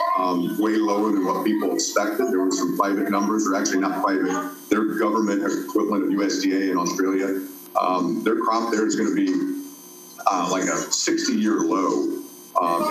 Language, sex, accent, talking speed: English, male, American, 170 wpm